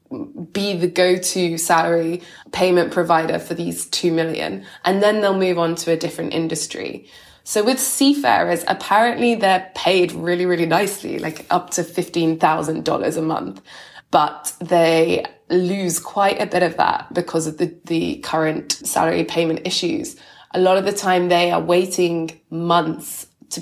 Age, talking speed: 20-39, 150 wpm